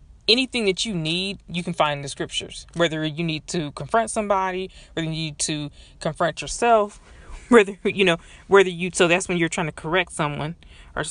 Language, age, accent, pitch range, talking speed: English, 20-39, American, 150-185 Hz, 195 wpm